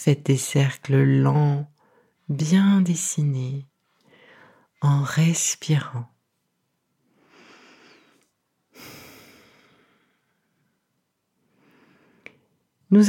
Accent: French